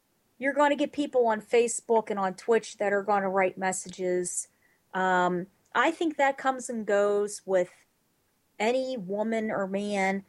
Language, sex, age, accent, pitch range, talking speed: English, female, 30-49, American, 185-255 Hz, 165 wpm